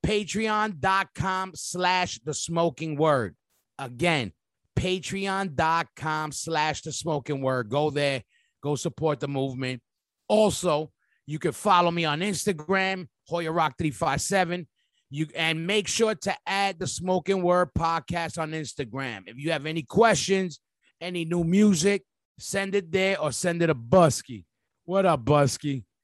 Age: 30-49